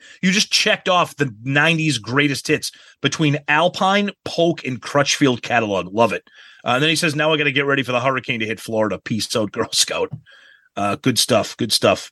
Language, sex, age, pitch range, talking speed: English, male, 30-49, 130-175 Hz, 210 wpm